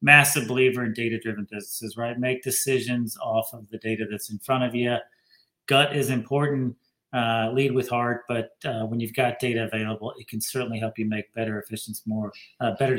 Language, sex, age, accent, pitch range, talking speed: English, male, 40-59, American, 110-130 Hz, 185 wpm